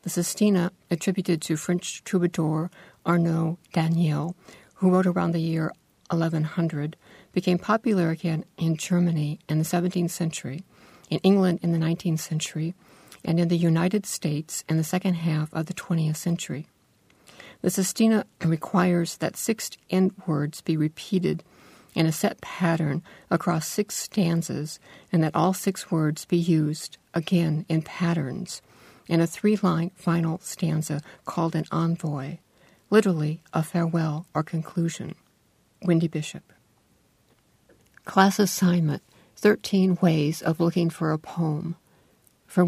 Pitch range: 160-185 Hz